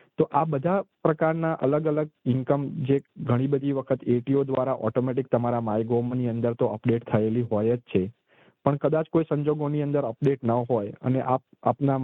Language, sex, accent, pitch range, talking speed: Gujarati, male, native, 115-135 Hz, 165 wpm